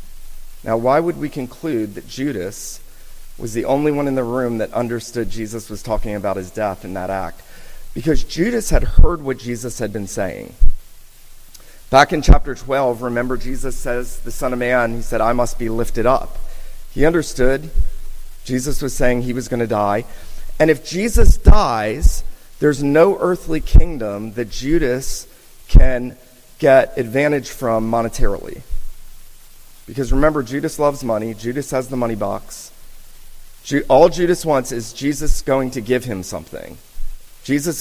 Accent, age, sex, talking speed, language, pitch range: American, 30-49, male, 155 wpm, English, 115-150 Hz